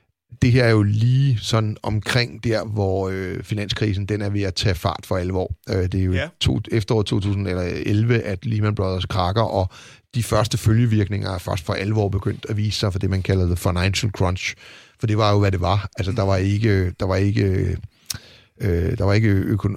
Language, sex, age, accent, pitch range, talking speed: Danish, male, 30-49, native, 95-115 Hz, 205 wpm